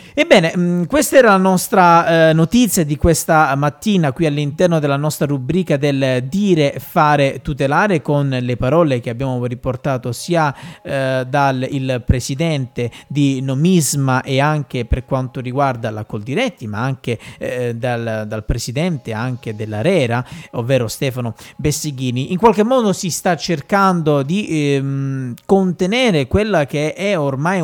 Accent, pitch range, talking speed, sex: native, 135-180 Hz, 140 wpm, male